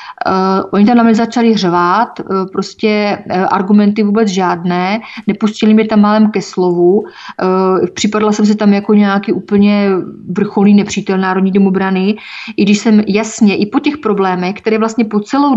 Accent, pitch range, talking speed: native, 190-215 Hz, 150 wpm